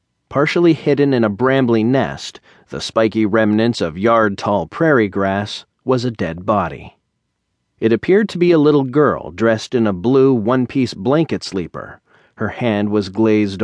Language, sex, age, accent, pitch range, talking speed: English, male, 40-59, American, 105-125 Hz, 155 wpm